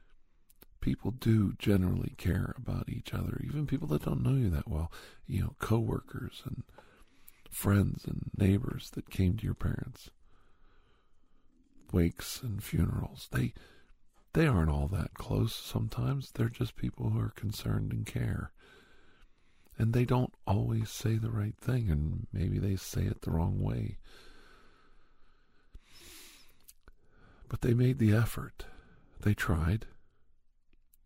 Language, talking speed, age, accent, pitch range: English, 130 wpm, 50-69, American, 85-115 Hz